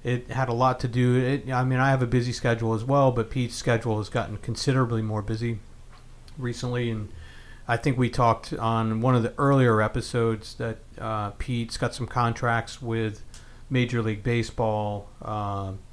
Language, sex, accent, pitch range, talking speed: English, male, American, 105-125 Hz, 180 wpm